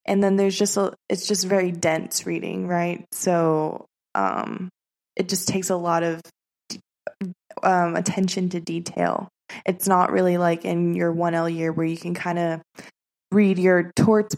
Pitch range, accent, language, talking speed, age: 170-190 Hz, American, English, 165 wpm, 20-39